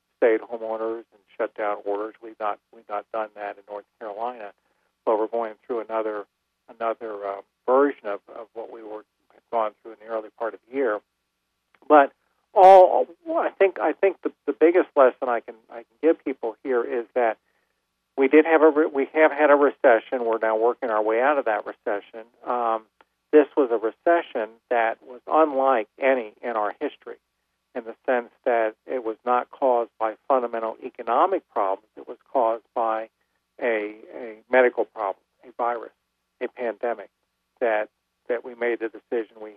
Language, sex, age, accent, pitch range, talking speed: English, male, 50-69, American, 105-130 Hz, 180 wpm